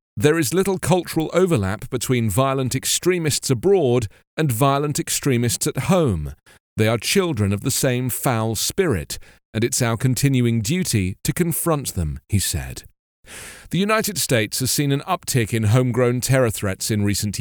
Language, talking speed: English, 155 wpm